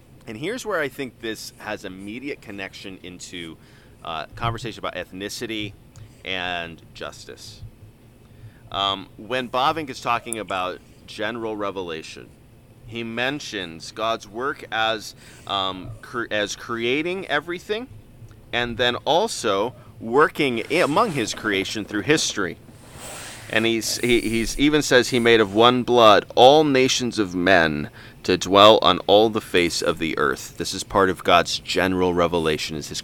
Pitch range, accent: 100-125 Hz, American